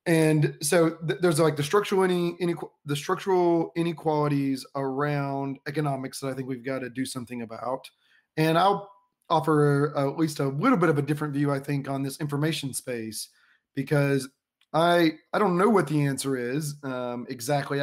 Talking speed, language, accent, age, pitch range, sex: 165 wpm, English, American, 30-49, 135-160 Hz, male